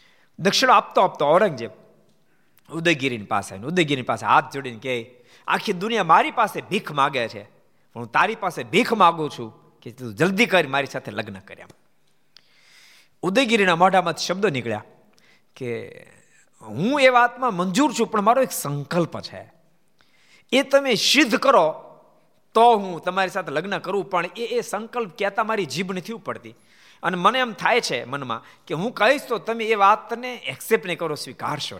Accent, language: native, Gujarati